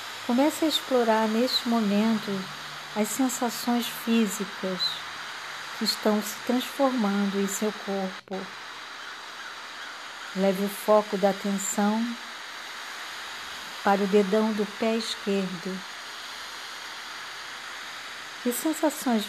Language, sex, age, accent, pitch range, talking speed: Portuguese, female, 50-69, Brazilian, 185-225 Hz, 85 wpm